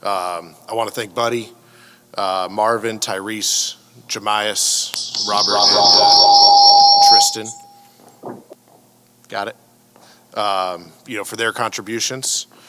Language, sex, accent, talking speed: English, male, American, 100 wpm